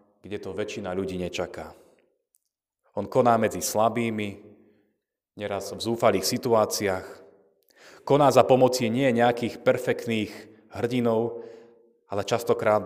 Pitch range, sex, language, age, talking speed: 105-125 Hz, male, Slovak, 30-49, 105 wpm